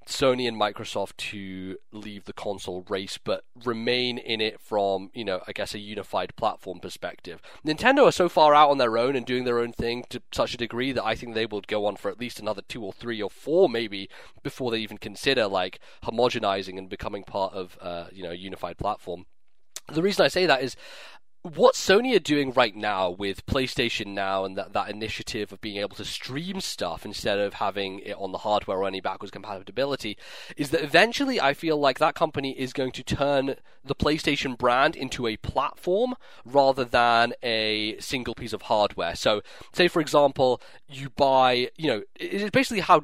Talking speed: 200 wpm